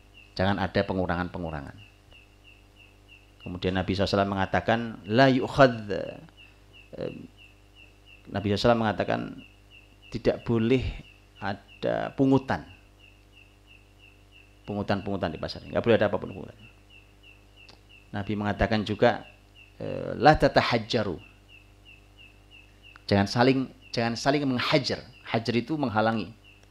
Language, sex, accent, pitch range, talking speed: Indonesian, male, native, 100-110 Hz, 85 wpm